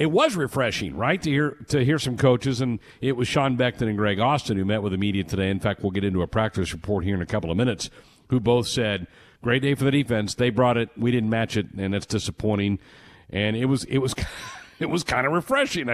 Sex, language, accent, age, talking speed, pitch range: male, English, American, 50-69, 250 wpm, 100-135 Hz